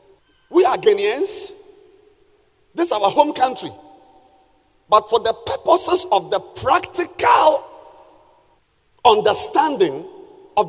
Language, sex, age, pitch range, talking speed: English, male, 50-69, 315-400 Hz, 95 wpm